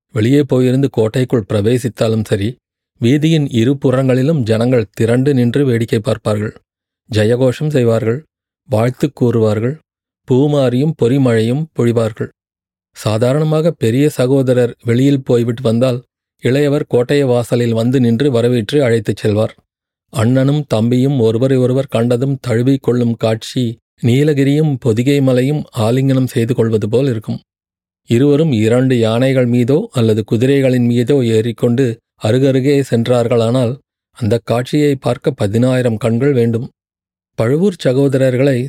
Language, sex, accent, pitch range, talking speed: Tamil, male, native, 115-140 Hz, 105 wpm